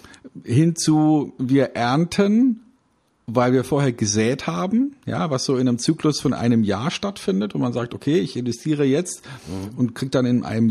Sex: male